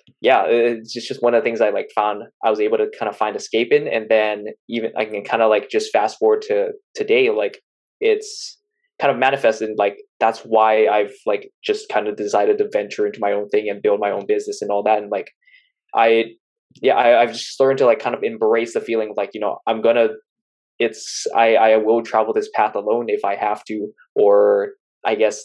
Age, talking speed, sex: 20-39, 220 wpm, male